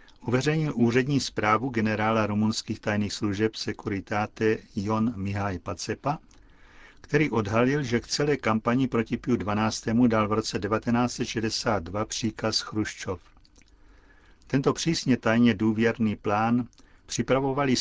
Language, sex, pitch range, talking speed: Czech, male, 100-120 Hz, 110 wpm